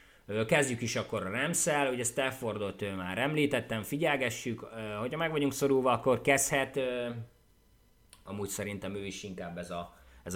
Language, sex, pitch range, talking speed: Hungarian, male, 95-130 Hz, 145 wpm